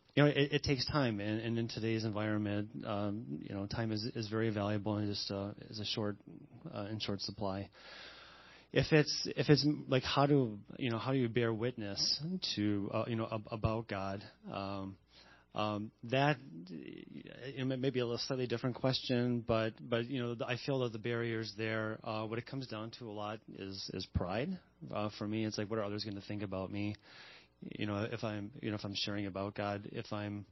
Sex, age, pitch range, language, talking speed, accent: male, 30-49, 100-120 Hz, English, 215 wpm, American